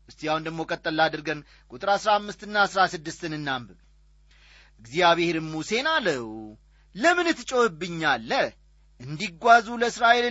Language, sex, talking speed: Amharic, male, 70 wpm